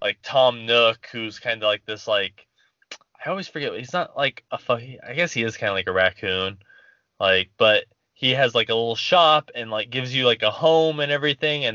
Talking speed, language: 225 wpm, English